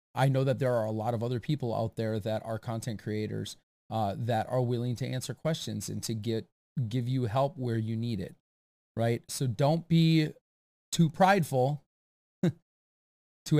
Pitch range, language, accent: 110-130 Hz, English, American